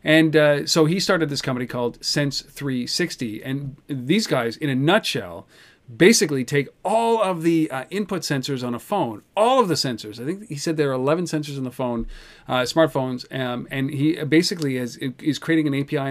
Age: 40-59